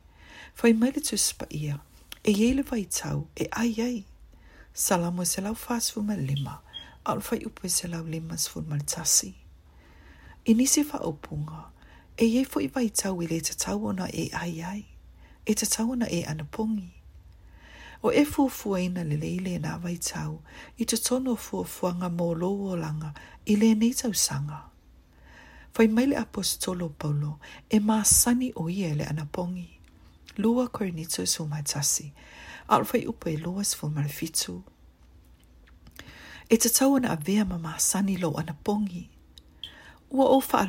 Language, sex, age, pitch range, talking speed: English, female, 40-59, 150-220 Hz, 130 wpm